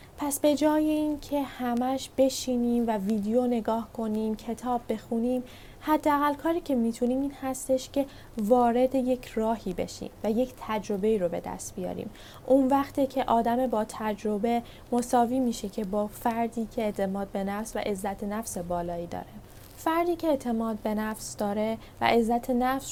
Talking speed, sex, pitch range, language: 155 wpm, female, 210-255 Hz, Persian